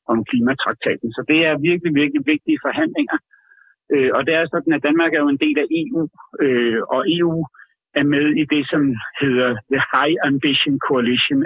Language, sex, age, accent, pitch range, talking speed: Danish, male, 60-79, native, 130-170 Hz, 175 wpm